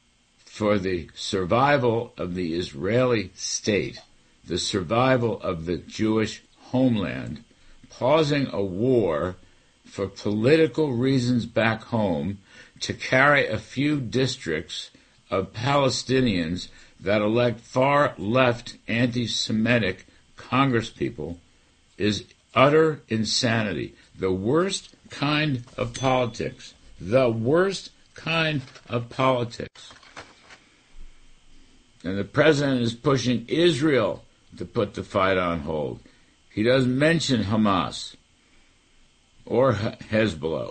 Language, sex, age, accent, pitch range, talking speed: English, male, 60-79, American, 100-130 Hz, 95 wpm